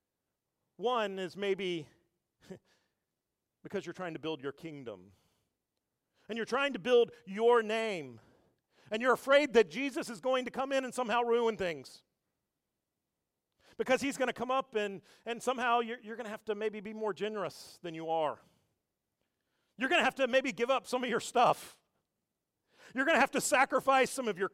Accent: American